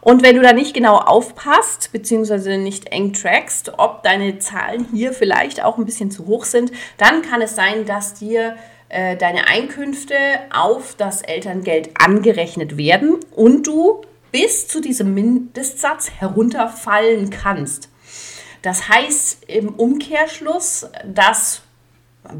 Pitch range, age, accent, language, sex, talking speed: 185-250 Hz, 30-49, German, German, female, 135 wpm